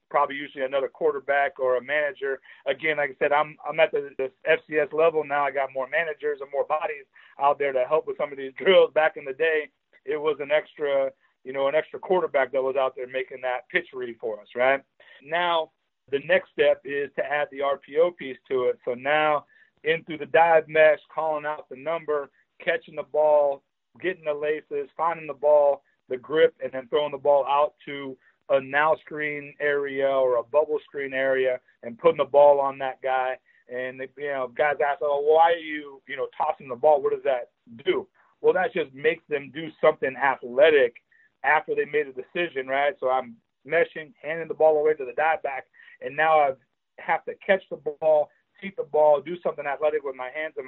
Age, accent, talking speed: 40-59, American, 210 wpm